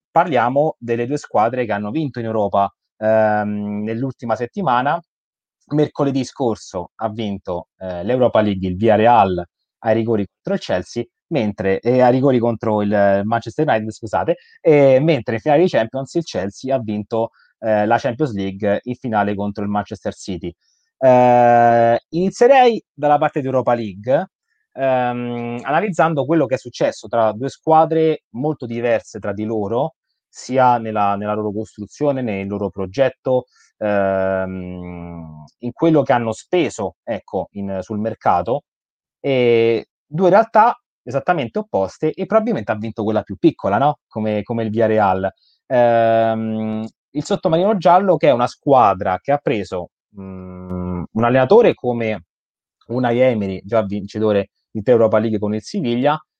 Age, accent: 20-39, native